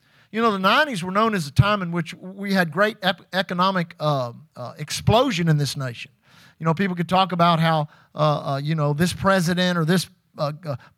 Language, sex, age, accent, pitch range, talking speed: English, male, 50-69, American, 165-210 Hz, 210 wpm